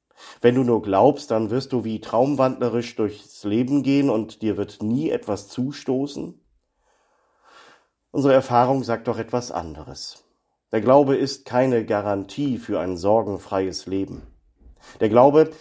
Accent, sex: German, male